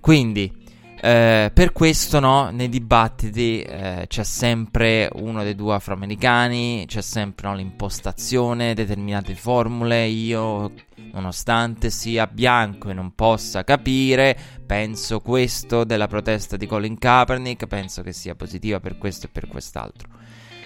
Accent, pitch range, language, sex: native, 100-120 Hz, Italian, male